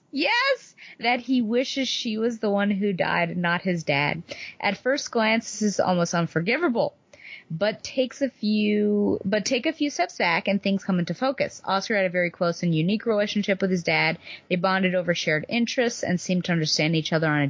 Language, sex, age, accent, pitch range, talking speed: English, female, 30-49, American, 160-205 Hz, 200 wpm